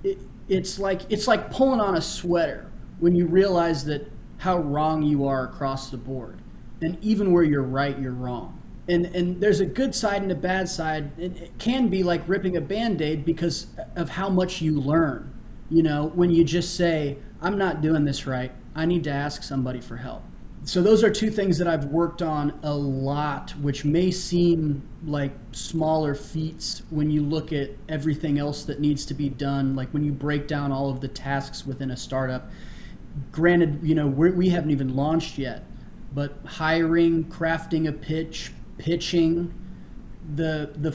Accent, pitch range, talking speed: American, 140-170 Hz, 180 wpm